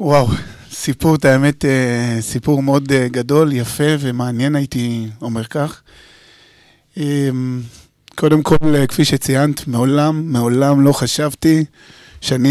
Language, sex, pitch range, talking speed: Hebrew, male, 125-150 Hz, 95 wpm